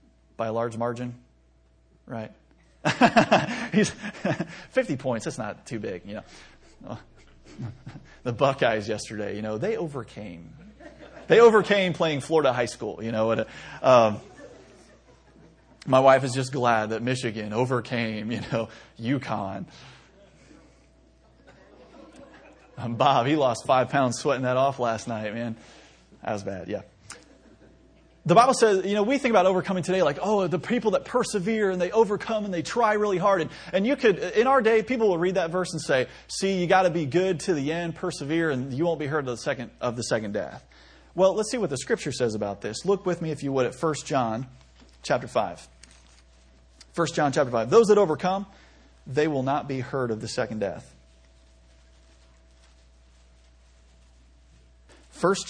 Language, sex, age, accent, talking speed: English, male, 30-49, American, 165 wpm